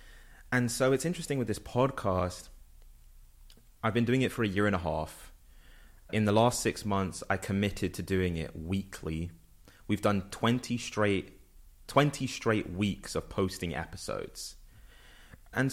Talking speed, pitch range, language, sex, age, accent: 150 wpm, 90-120 Hz, English, male, 20-39, British